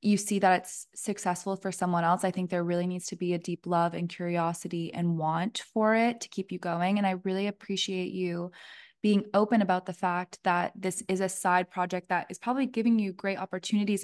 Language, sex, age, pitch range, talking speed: English, female, 20-39, 180-205 Hz, 220 wpm